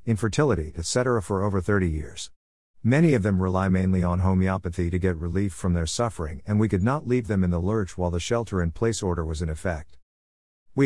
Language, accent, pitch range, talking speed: English, American, 85-110 Hz, 200 wpm